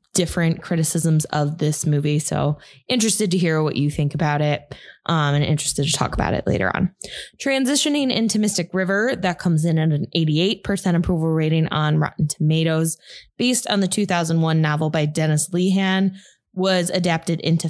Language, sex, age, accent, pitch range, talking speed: English, female, 20-39, American, 160-200 Hz, 165 wpm